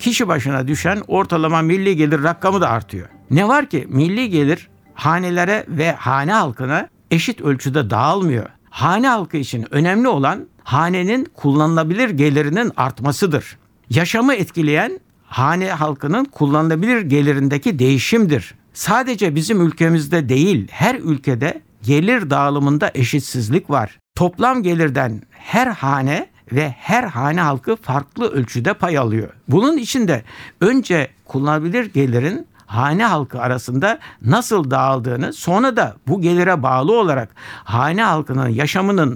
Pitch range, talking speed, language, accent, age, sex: 135-185 Hz, 120 wpm, Turkish, native, 60-79, male